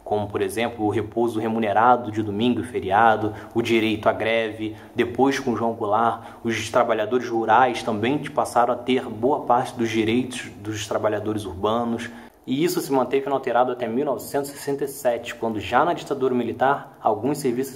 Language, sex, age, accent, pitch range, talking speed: English, male, 20-39, Brazilian, 115-145 Hz, 160 wpm